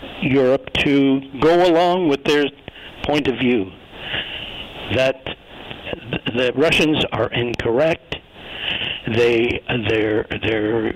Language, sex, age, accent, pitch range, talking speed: English, male, 60-79, American, 130-175 Hz, 95 wpm